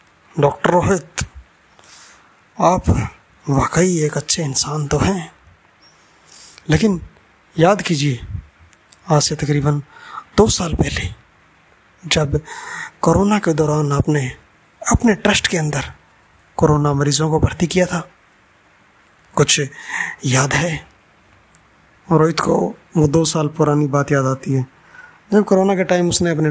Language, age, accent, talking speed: Hindi, 20-39, native, 120 wpm